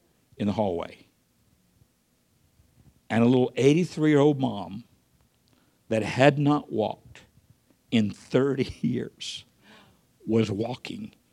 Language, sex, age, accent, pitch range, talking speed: English, male, 60-79, American, 145-175 Hz, 90 wpm